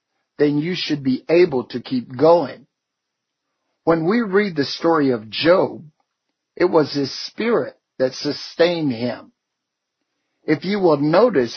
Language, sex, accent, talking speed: English, male, American, 135 wpm